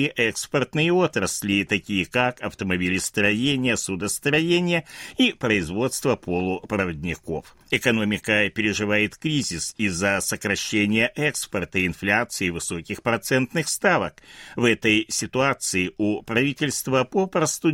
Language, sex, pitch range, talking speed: Russian, male, 100-155 Hz, 85 wpm